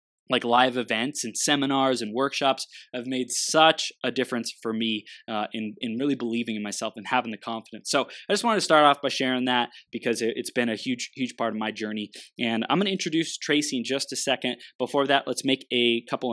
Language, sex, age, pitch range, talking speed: English, male, 20-39, 115-135 Hz, 225 wpm